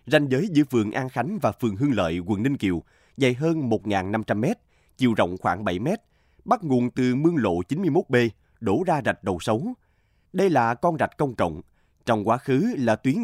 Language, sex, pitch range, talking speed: Vietnamese, male, 110-150 Hz, 190 wpm